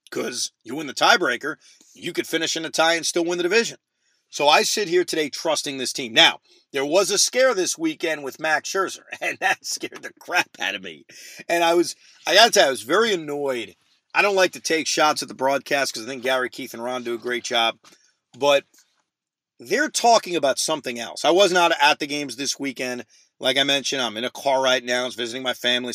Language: English